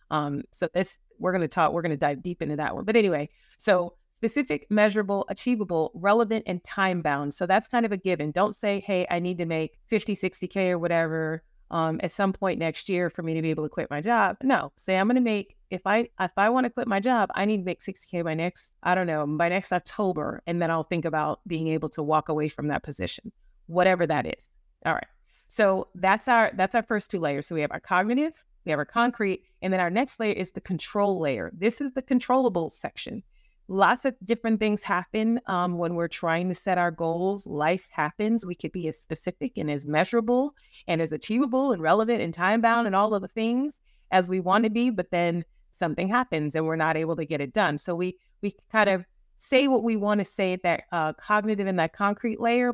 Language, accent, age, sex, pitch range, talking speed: English, American, 30-49, female, 165-220 Hz, 235 wpm